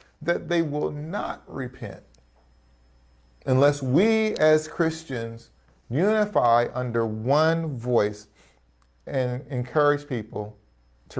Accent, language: American, English